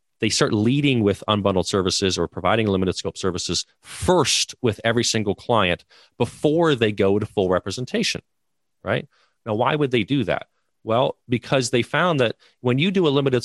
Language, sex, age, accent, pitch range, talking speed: English, male, 30-49, American, 100-135 Hz, 175 wpm